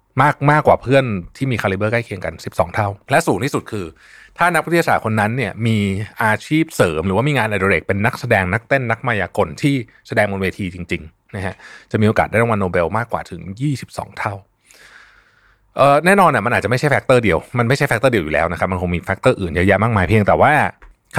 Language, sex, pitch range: Thai, male, 100-140 Hz